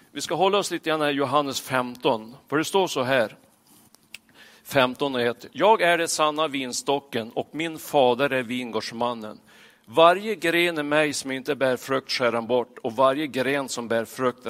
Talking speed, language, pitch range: 180 wpm, Swedish, 115-150 Hz